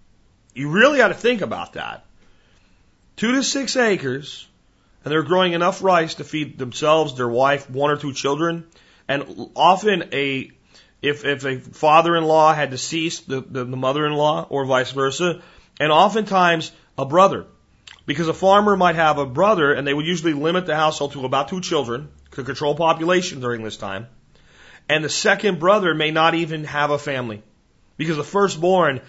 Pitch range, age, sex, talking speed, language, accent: 130-170 Hz, 40-59, male, 170 wpm, English, American